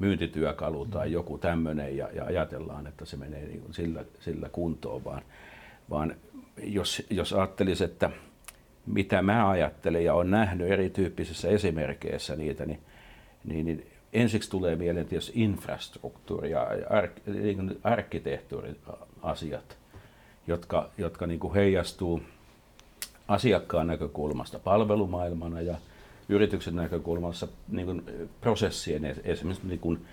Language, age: Finnish, 60-79